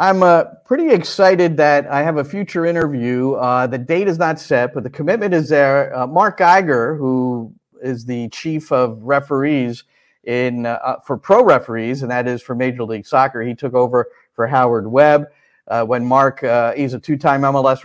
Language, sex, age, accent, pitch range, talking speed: English, male, 50-69, American, 125-160 Hz, 190 wpm